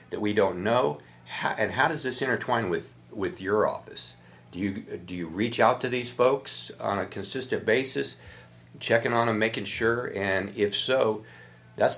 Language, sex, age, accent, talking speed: English, male, 50-69, American, 170 wpm